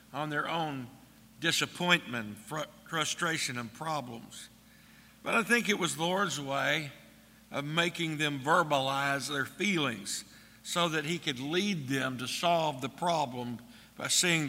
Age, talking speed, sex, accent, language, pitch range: 60-79, 135 wpm, male, American, English, 130-160 Hz